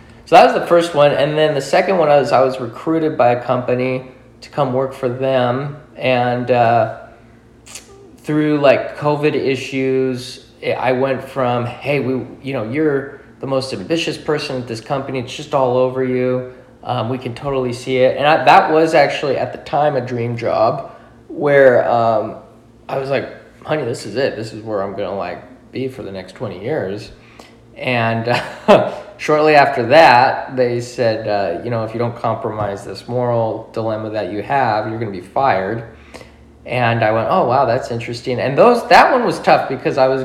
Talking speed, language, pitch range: 190 wpm, English, 115-135 Hz